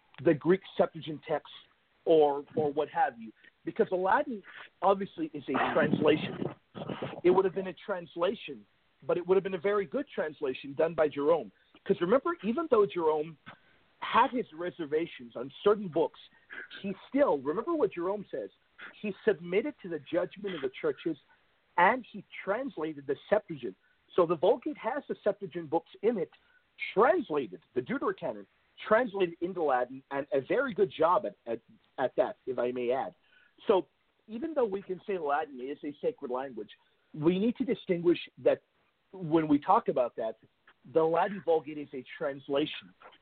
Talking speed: 165 wpm